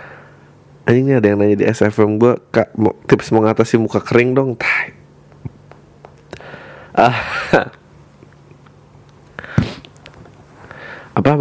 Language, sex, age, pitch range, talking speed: Indonesian, male, 30-49, 100-145 Hz, 85 wpm